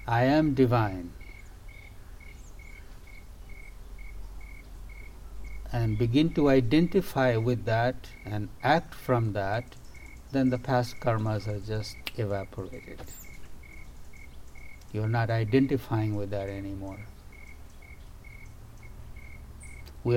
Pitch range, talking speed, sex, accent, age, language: 80-120 Hz, 80 wpm, male, Indian, 60-79, English